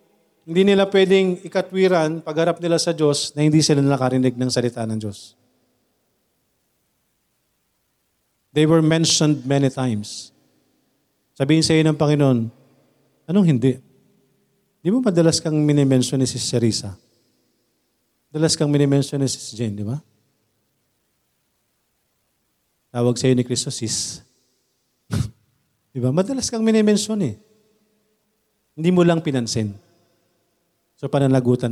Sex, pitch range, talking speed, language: male, 130-180 Hz, 115 wpm, Filipino